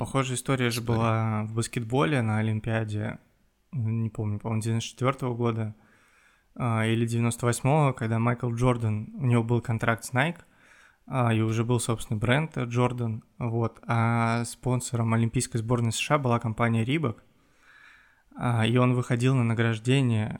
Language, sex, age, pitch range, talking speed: Russian, male, 20-39, 115-125 Hz, 130 wpm